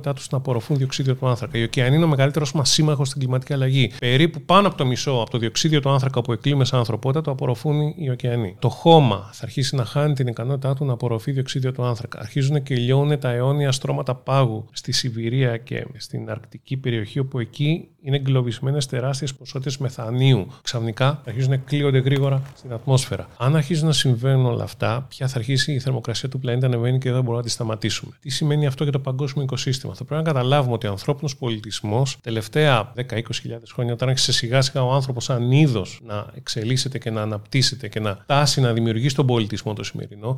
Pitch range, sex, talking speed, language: 120-145 Hz, male, 205 wpm, Greek